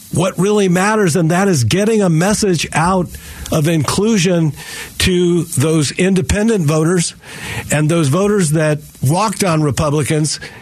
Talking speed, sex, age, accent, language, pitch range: 130 wpm, male, 50-69, American, English, 155-205 Hz